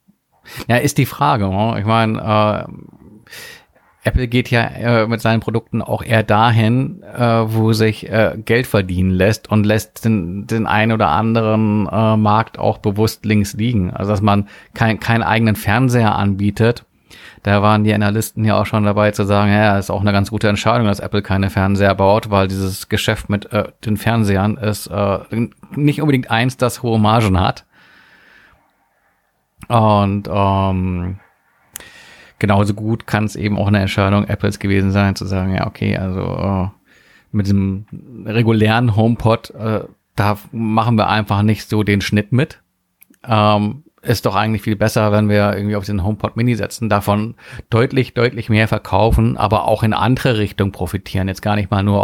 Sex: male